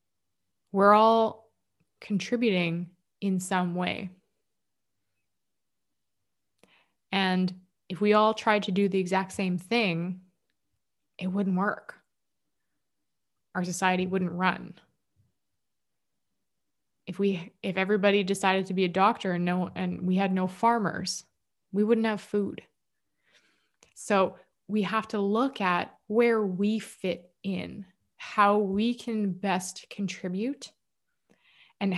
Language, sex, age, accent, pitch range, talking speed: English, female, 20-39, American, 180-210 Hz, 115 wpm